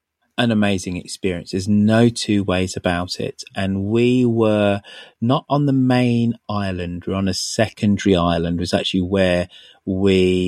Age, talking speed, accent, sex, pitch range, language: 30-49, 160 wpm, British, male, 90-110 Hz, English